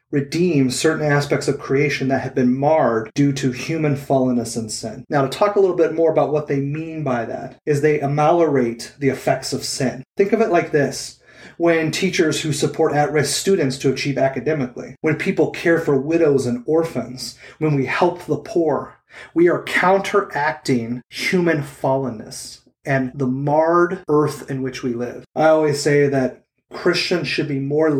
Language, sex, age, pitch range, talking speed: English, male, 30-49, 135-170 Hz, 175 wpm